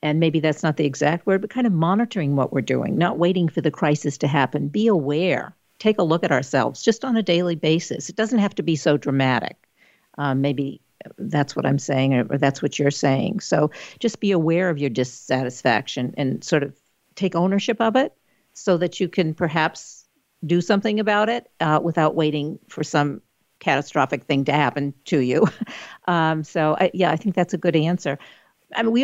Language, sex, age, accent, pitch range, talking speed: English, female, 50-69, American, 145-185 Hz, 205 wpm